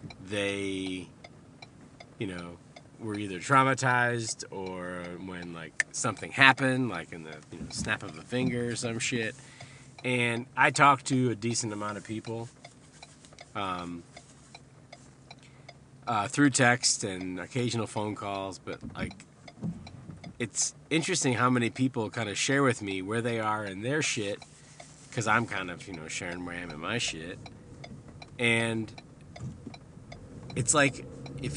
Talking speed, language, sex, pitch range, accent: 145 wpm, English, male, 110-135 Hz, American